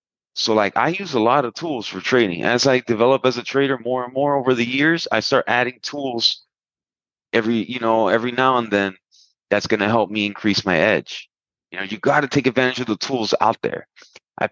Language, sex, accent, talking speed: English, male, American, 225 wpm